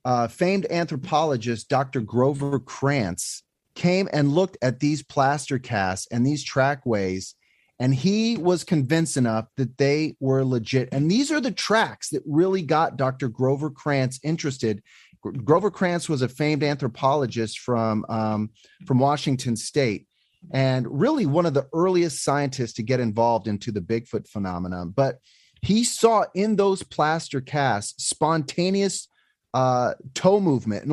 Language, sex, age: English, male, 30-49